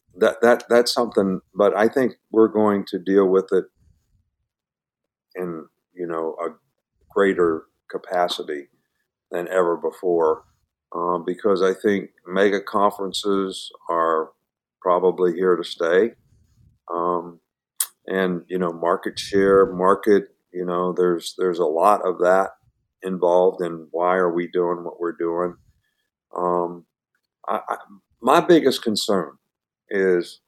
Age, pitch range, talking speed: 50-69, 90-110 Hz, 120 wpm